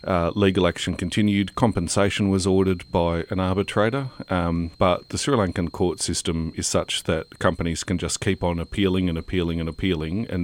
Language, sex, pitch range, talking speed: English, male, 85-100 Hz, 180 wpm